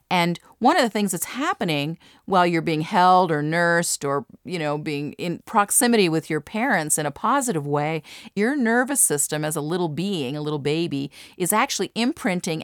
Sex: female